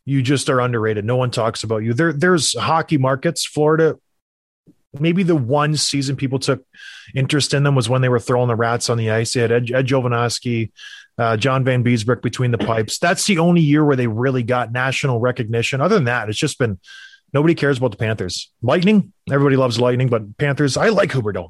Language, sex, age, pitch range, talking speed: English, male, 20-39, 125-155 Hz, 210 wpm